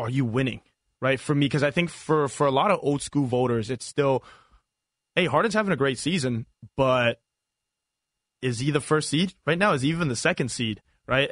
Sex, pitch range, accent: male, 125-160 Hz, American